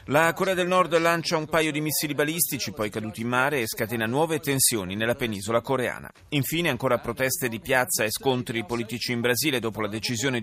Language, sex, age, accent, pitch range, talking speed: Italian, male, 30-49, native, 115-155 Hz, 195 wpm